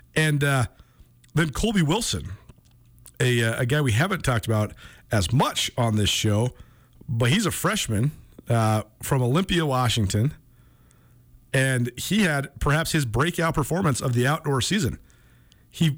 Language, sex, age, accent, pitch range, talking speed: English, male, 40-59, American, 120-165 Hz, 140 wpm